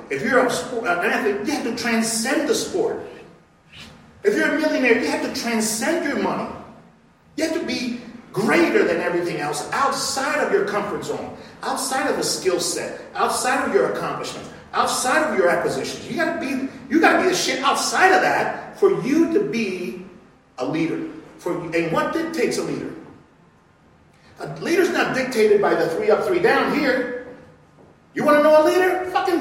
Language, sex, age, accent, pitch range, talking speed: English, male, 40-59, American, 220-340 Hz, 180 wpm